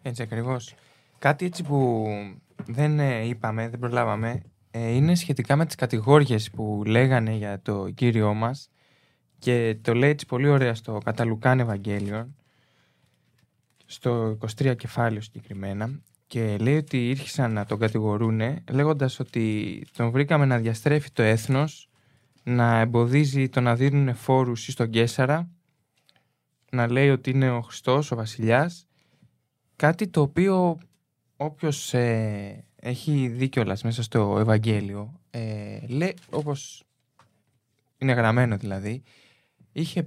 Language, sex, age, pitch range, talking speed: Greek, male, 20-39, 115-145 Hz, 125 wpm